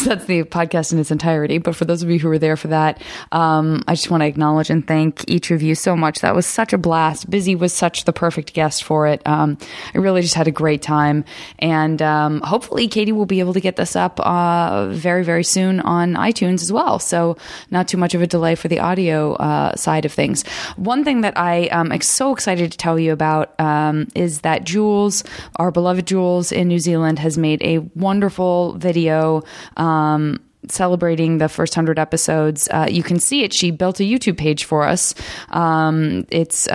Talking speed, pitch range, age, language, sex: 215 wpm, 155-180 Hz, 20-39, English, female